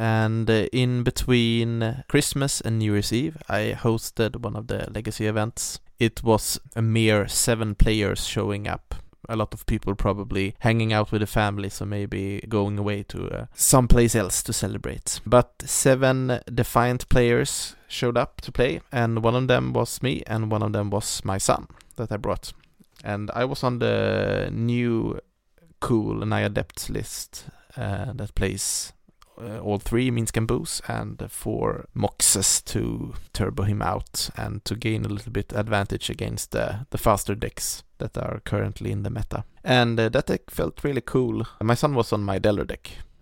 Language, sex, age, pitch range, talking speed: English, male, 20-39, 100-120 Hz, 175 wpm